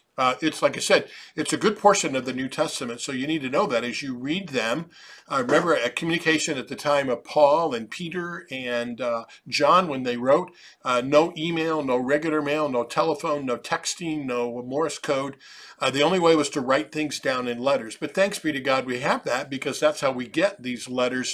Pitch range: 125-155 Hz